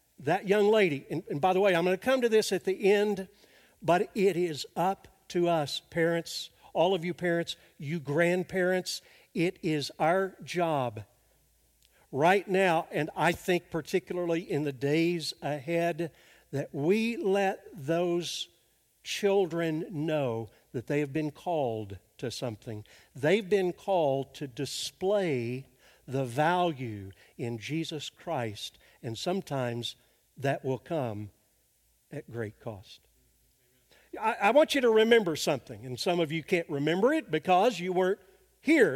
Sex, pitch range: male, 145-200 Hz